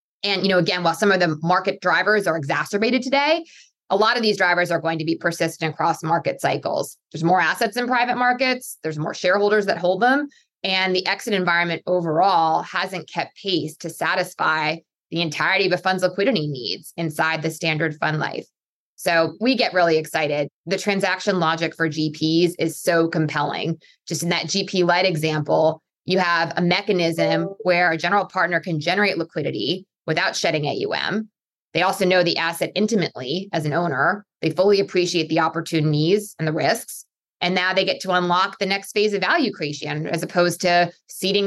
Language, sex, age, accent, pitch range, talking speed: English, female, 20-39, American, 165-195 Hz, 180 wpm